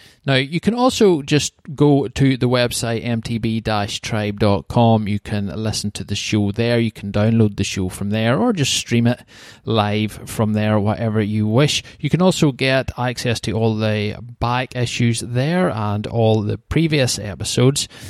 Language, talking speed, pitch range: English, 165 wpm, 105-125 Hz